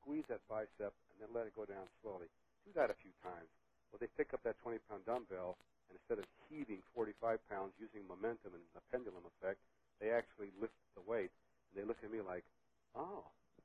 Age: 60-79